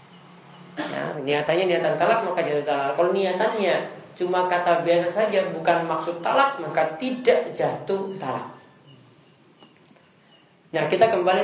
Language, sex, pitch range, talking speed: Malay, male, 150-190 Hz, 120 wpm